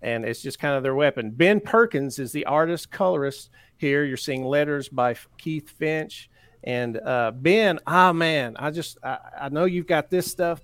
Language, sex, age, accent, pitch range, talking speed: English, male, 50-69, American, 120-155 Hz, 195 wpm